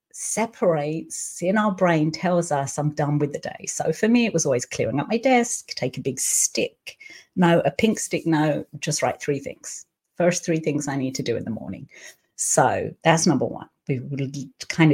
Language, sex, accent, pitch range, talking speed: English, female, British, 150-210 Hz, 200 wpm